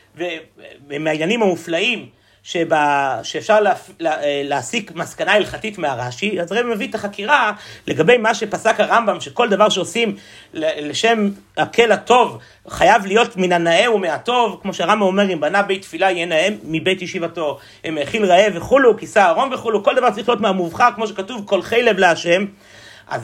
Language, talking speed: Hebrew, 150 wpm